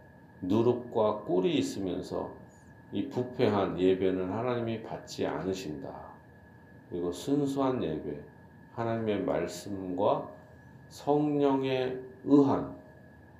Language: Korean